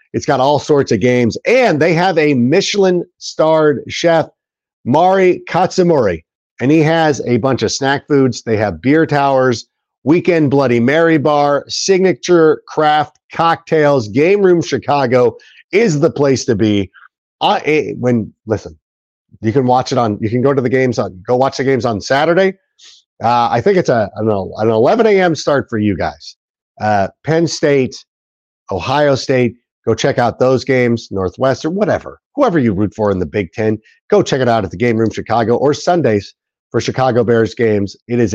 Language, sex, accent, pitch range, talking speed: English, male, American, 110-155 Hz, 185 wpm